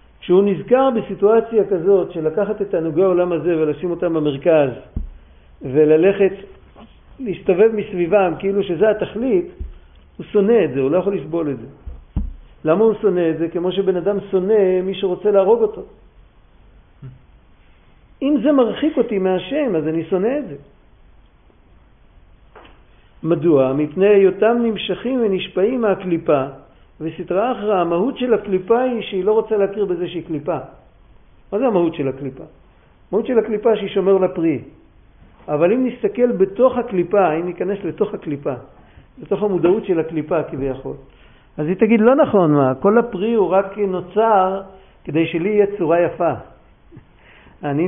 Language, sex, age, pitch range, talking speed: Hebrew, male, 50-69, 155-210 Hz, 145 wpm